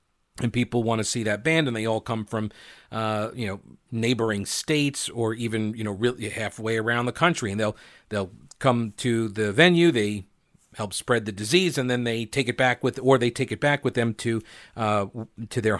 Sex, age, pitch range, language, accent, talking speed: male, 50-69, 110-145 Hz, English, American, 215 wpm